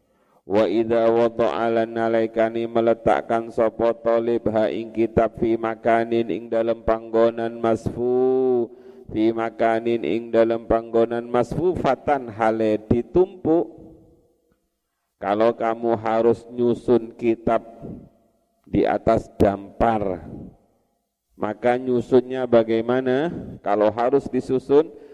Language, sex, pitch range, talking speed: Indonesian, male, 110-120 Hz, 85 wpm